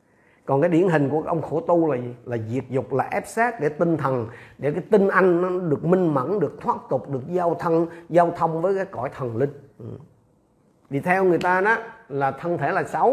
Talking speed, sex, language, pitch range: 235 wpm, male, Vietnamese, 125-180 Hz